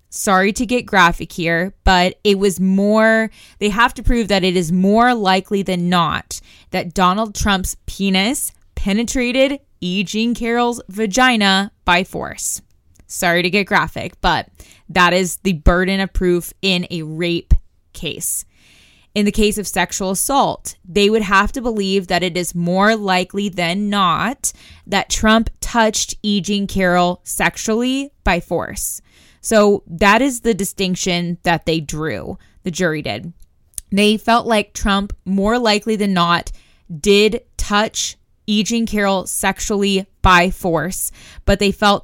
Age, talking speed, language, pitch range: 20-39, 145 wpm, English, 175-210 Hz